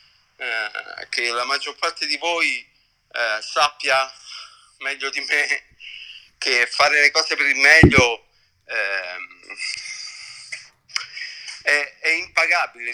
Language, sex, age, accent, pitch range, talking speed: Italian, male, 50-69, native, 135-185 Hz, 100 wpm